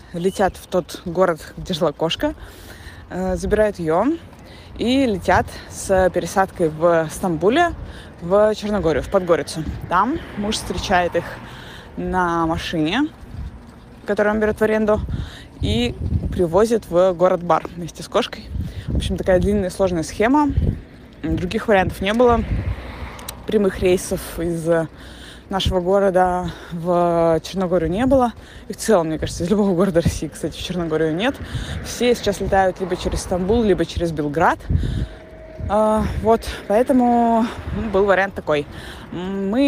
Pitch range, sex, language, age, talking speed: 170-210 Hz, female, Russian, 20-39, 125 wpm